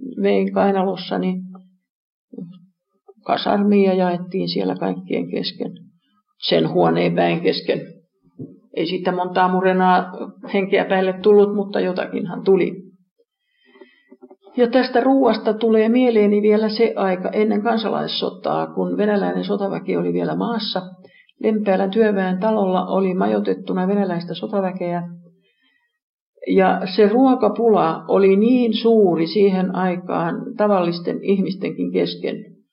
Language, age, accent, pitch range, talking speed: Finnish, 50-69, native, 185-225 Hz, 105 wpm